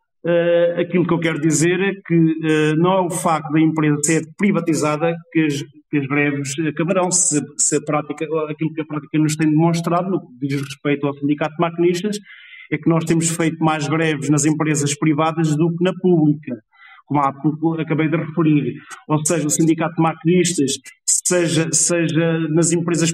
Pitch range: 155-175 Hz